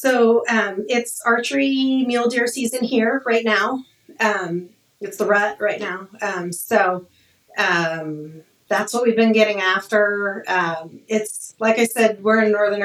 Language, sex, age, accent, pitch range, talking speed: English, female, 30-49, American, 175-220 Hz, 155 wpm